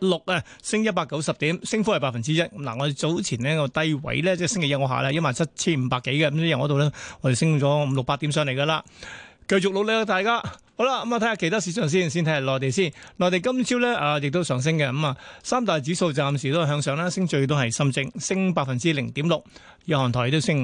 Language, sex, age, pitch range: Chinese, male, 30-49, 140-180 Hz